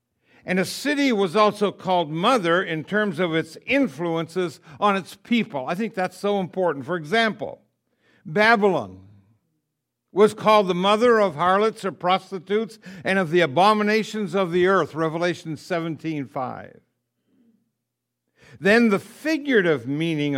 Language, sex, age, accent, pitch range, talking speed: English, male, 60-79, American, 160-215 Hz, 135 wpm